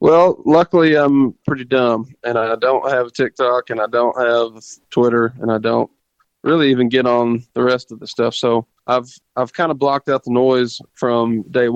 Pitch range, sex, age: 115-130 Hz, male, 20-39